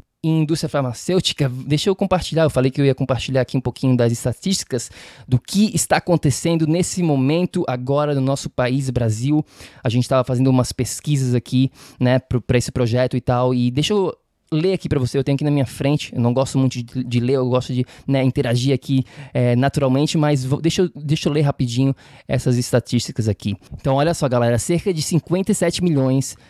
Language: Portuguese